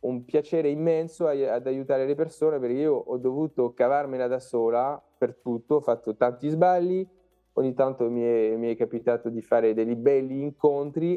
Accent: native